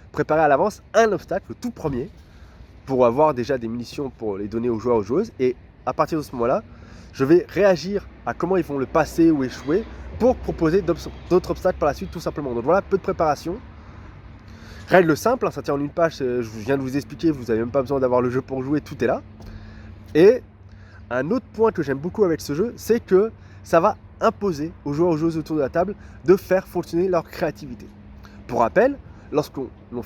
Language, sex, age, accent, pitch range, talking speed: French, male, 20-39, French, 110-175 Hz, 220 wpm